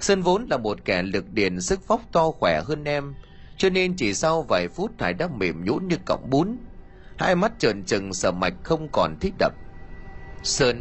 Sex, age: male, 30-49